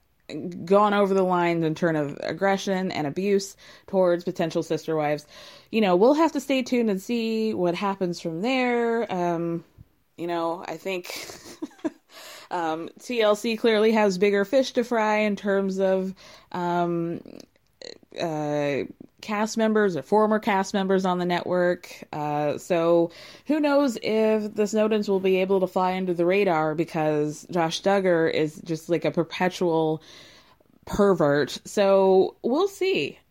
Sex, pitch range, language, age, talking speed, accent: female, 175-240 Hz, English, 20-39, 145 wpm, American